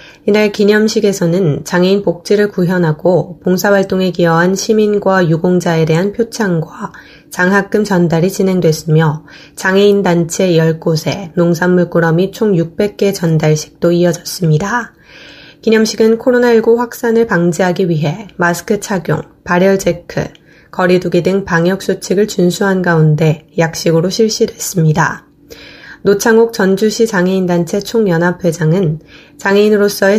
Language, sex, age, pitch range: Korean, female, 20-39, 170-205 Hz